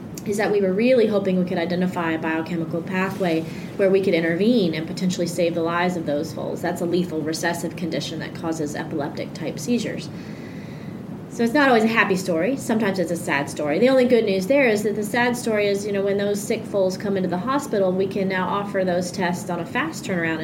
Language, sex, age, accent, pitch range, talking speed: English, female, 30-49, American, 165-205 Hz, 225 wpm